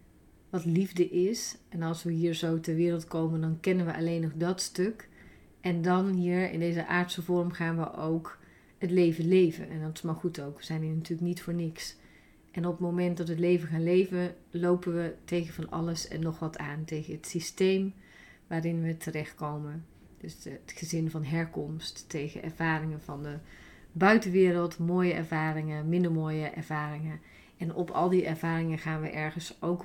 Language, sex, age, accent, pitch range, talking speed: Dutch, female, 30-49, Dutch, 160-180 Hz, 185 wpm